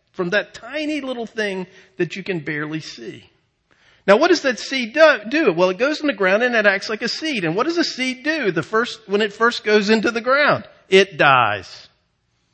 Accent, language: American, English